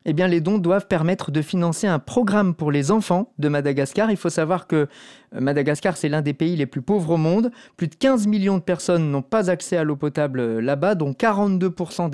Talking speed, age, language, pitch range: 210 wpm, 30-49, French, 150-195 Hz